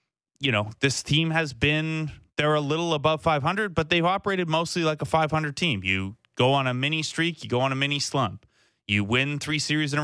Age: 30-49